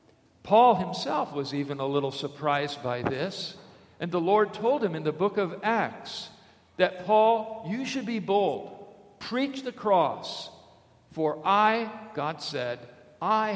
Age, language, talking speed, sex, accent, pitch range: 50-69, English, 145 wpm, male, American, 160-205 Hz